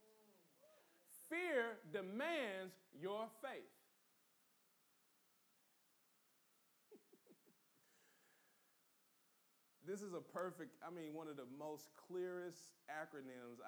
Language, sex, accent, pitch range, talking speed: English, male, American, 135-220 Hz, 70 wpm